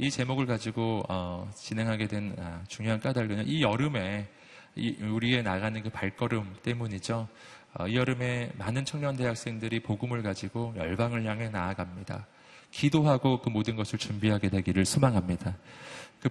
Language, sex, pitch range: Korean, male, 110-155 Hz